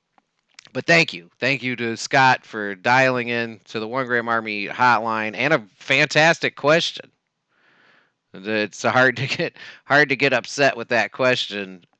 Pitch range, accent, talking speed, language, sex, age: 115-155 Hz, American, 155 wpm, English, male, 30-49